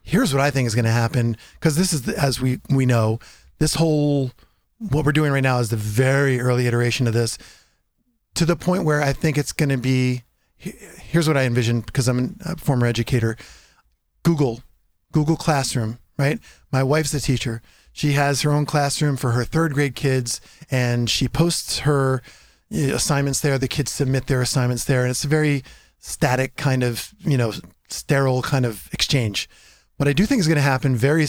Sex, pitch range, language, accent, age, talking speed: male, 125-155 Hz, English, American, 40-59, 190 wpm